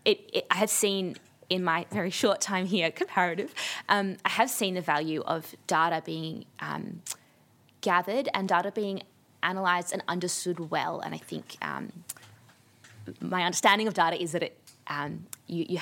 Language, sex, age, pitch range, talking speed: English, female, 20-39, 155-190 Hz, 165 wpm